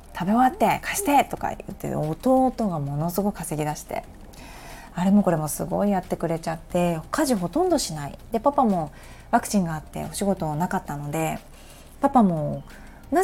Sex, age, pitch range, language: female, 20-39, 160-225 Hz, Japanese